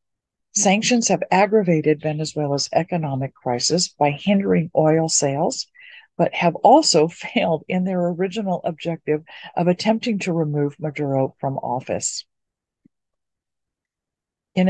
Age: 50-69